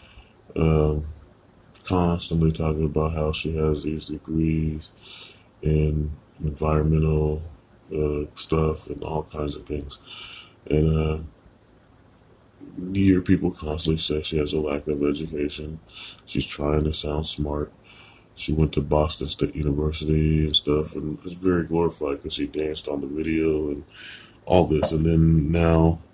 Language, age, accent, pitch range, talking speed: English, 20-39, American, 75-90 Hz, 140 wpm